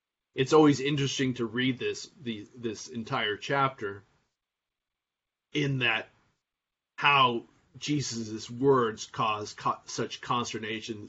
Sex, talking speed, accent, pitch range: male, 105 wpm, American, 115-135 Hz